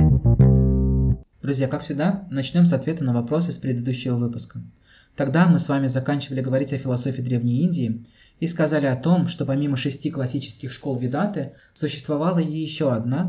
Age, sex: 20-39, male